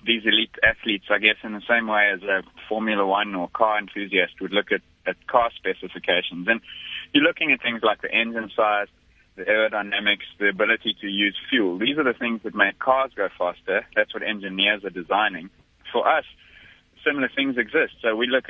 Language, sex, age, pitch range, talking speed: English, male, 20-39, 95-115 Hz, 195 wpm